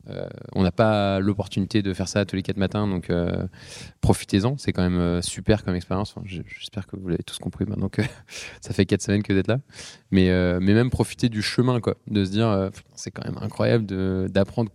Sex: male